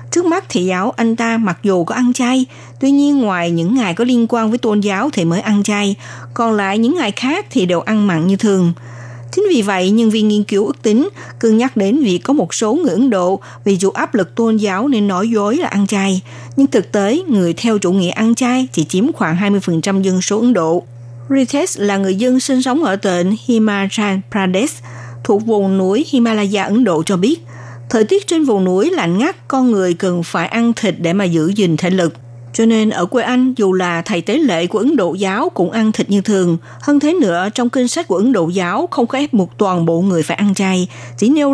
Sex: female